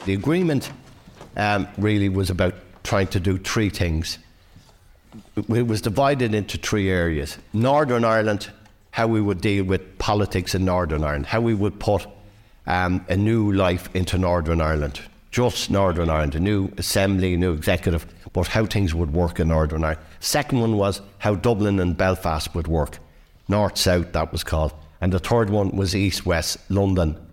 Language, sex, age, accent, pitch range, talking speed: English, male, 60-79, Irish, 85-105 Hz, 165 wpm